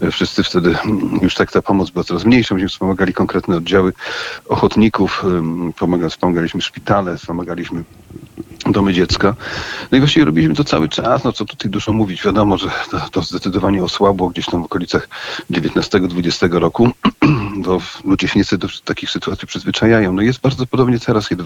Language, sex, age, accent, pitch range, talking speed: Polish, male, 40-59, native, 90-105 Hz, 155 wpm